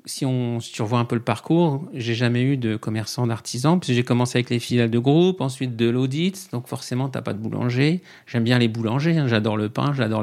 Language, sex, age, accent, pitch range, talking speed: French, male, 50-69, French, 115-140 Hz, 240 wpm